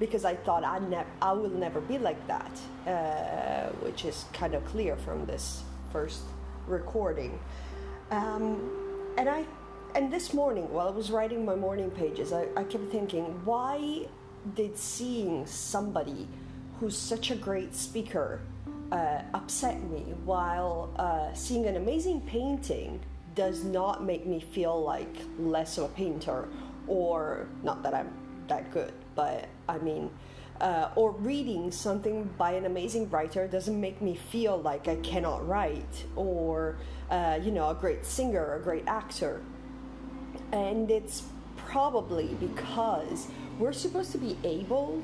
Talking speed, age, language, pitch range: 145 wpm, 30-49, English, 160-225 Hz